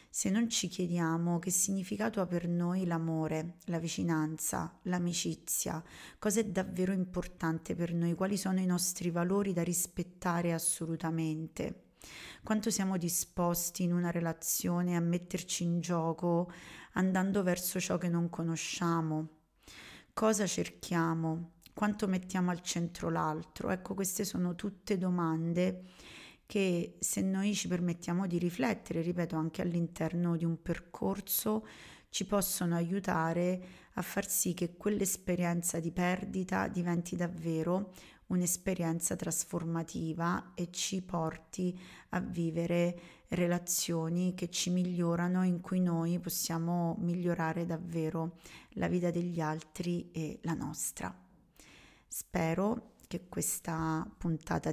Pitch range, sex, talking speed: 165-185 Hz, female, 120 wpm